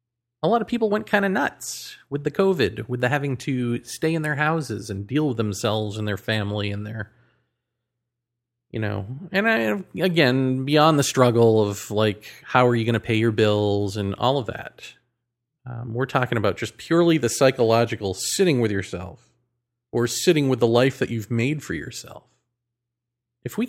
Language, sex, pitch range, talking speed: English, male, 115-140 Hz, 180 wpm